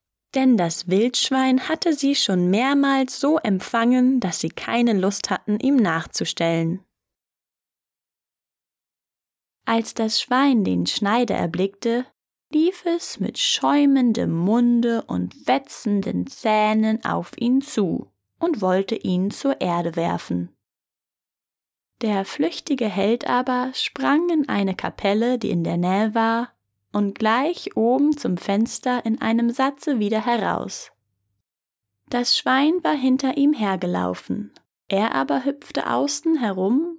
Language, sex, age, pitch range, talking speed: English, female, 10-29, 195-265 Hz, 120 wpm